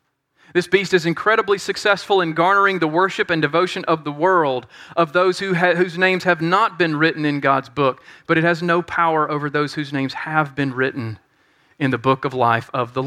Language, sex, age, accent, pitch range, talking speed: English, male, 40-59, American, 165-215 Hz, 200 wpm